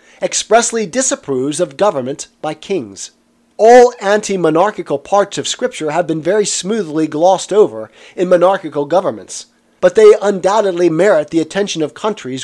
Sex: male